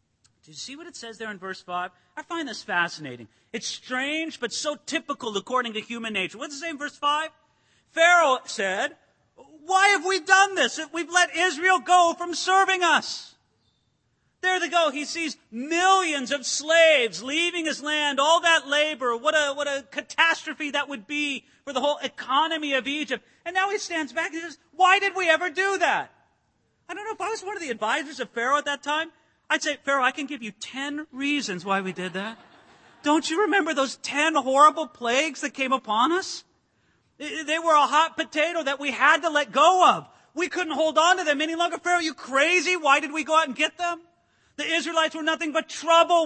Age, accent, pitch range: 40-59, American, 240-325 Hz